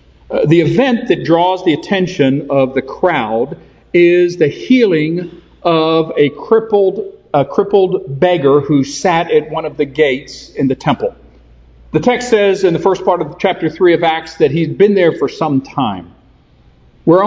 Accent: American